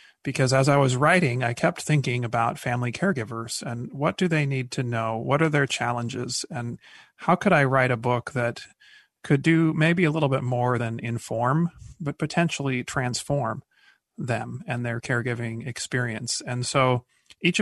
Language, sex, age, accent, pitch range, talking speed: English, male, 30-49, American, 120-145 Hz, 170 wpm